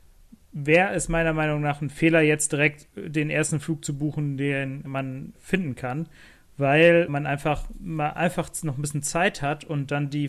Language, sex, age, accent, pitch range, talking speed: German, male, 30-49, German, 140-165 Hz, 180 wpm